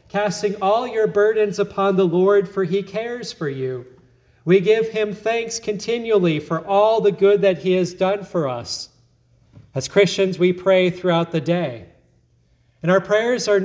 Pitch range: 150-200 Hz